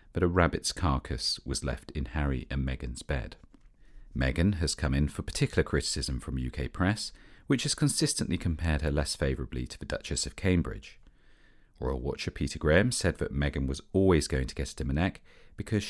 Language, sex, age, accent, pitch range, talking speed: English, male, 40-59, British, 70-105 Hz, 175 wpm